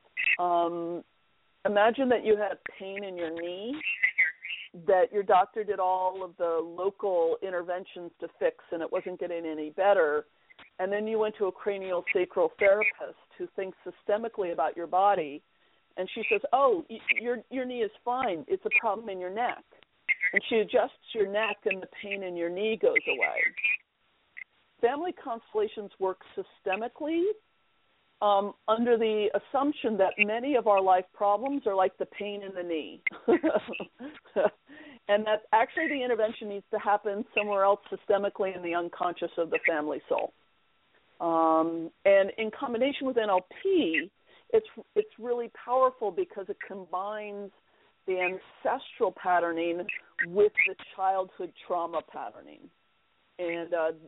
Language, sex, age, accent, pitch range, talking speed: English, female, 50-69, American, 185-240 Hz, 145 wpm